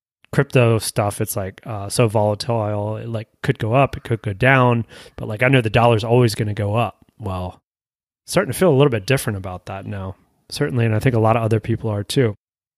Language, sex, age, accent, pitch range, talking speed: English, male, 30-49, American, 110-135 Hz, 230 wpm